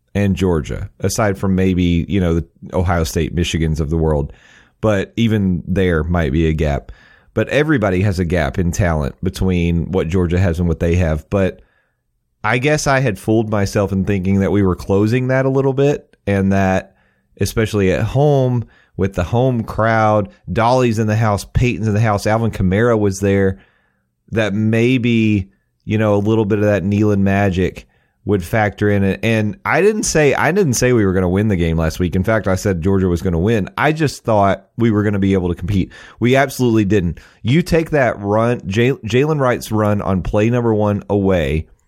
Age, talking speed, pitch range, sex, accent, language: 30-49, 200 wpm, 90-115 Hz, male, American, English